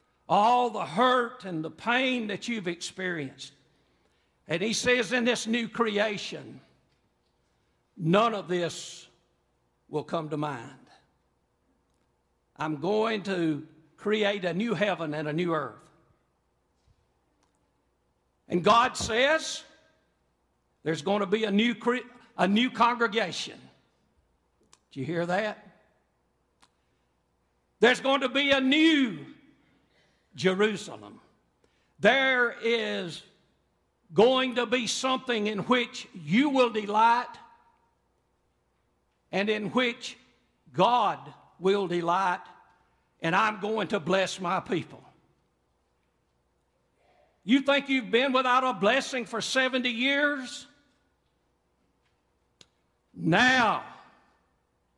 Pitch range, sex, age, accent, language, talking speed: 145-240 Hz, male, 60-79, American, English, 105 wpm